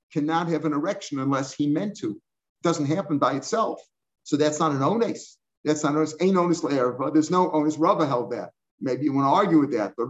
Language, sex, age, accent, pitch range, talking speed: English, male, 50-69, American, 150-180 Hz, 225 wpm